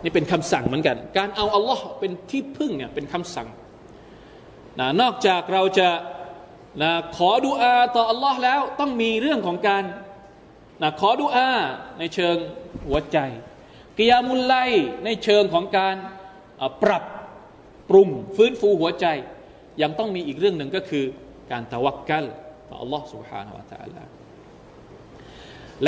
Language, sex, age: Thai, male, 20-39